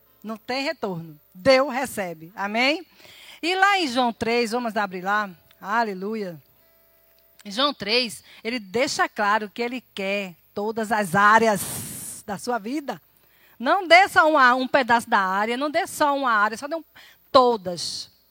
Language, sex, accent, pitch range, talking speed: Portuguese, female, Brazilian, 195-260 Hz, 155 wpm